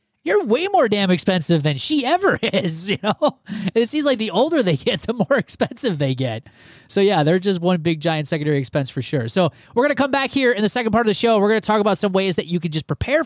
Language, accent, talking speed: English, American, 270 wpm